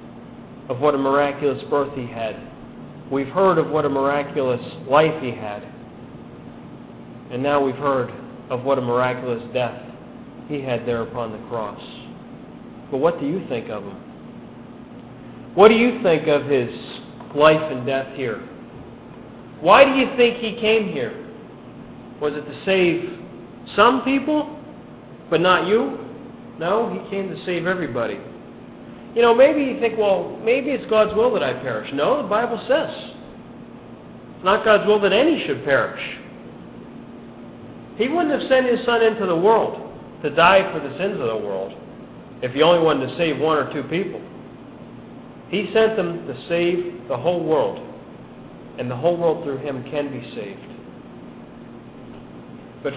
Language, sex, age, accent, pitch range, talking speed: English, male, 40-59, American, 135-215 Hz, 160 wpm